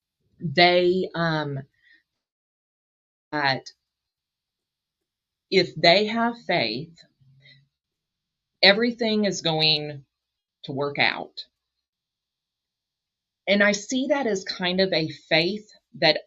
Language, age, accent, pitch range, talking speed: English, 40-59, American, 140-185 Hz, 85 wpm